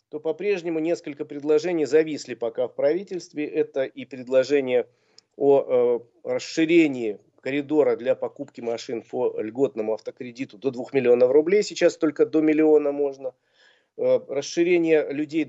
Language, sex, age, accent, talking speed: Russian, male, 40-59, native, 130 wpm